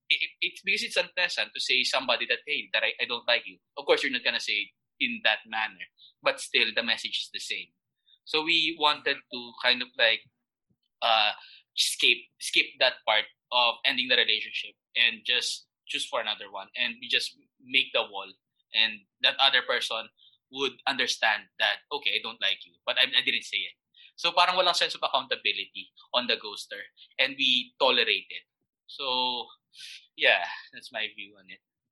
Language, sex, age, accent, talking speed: Filipino, male, 20-39, native, 190 wpm